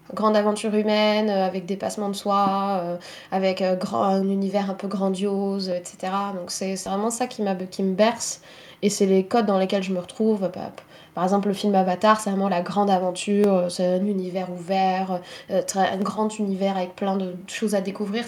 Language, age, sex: French, 20-39, female